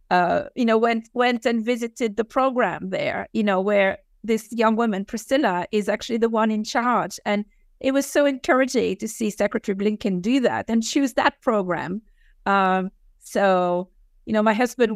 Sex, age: female, 50-69